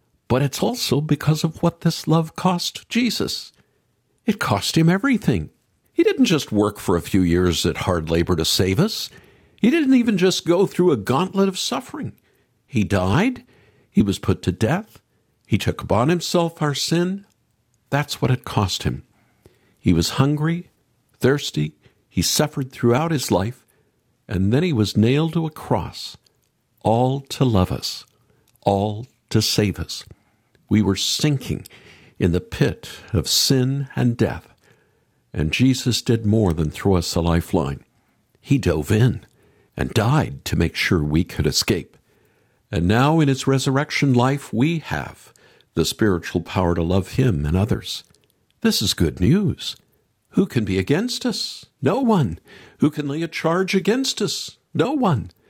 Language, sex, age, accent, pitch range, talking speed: English, male, 60-79, American, 100-165 Hz, 160 wpm